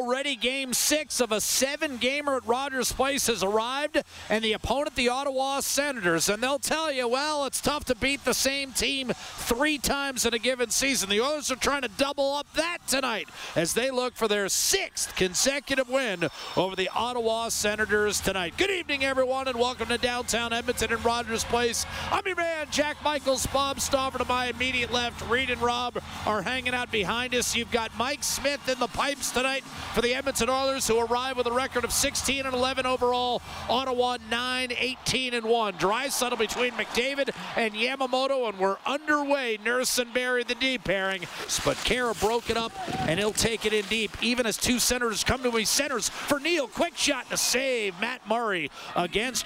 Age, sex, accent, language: 40-59, male, American, English